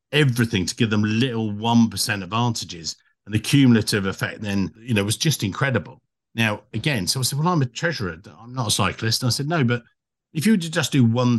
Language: English